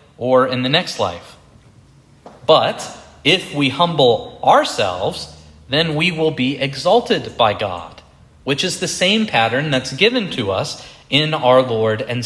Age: 30-49